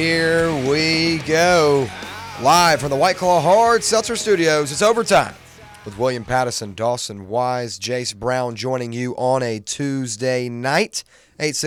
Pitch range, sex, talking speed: 115-150 Hz, male, 135 wpm